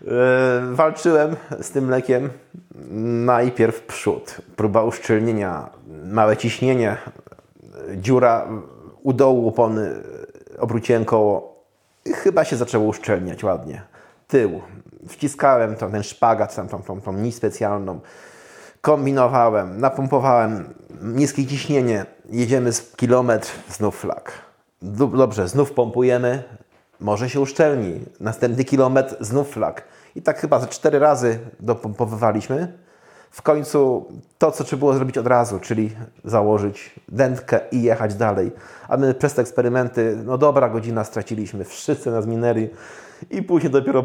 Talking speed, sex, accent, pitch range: 115 wpm, male, native, 110-140 Hz